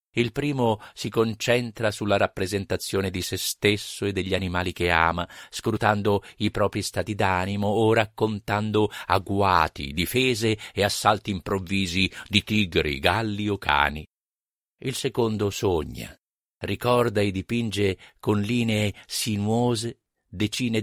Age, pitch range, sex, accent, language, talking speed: 50-69, 85-115 Hz, male, native, Italian, 120 wpm